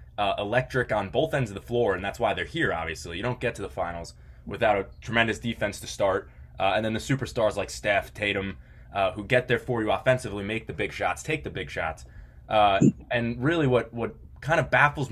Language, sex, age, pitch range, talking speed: English, male, 20-39, 100-130 Hz, 225 wpm